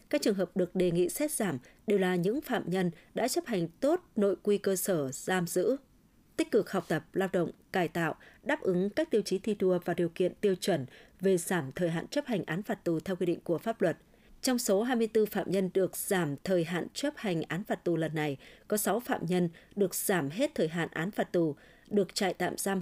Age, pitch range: 20-39, 170-220 Hz